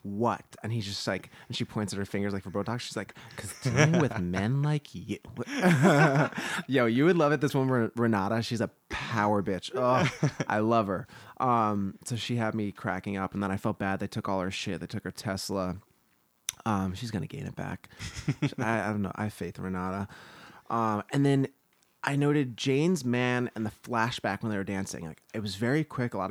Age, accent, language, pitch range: 20-39, American, English, 100-125 Hz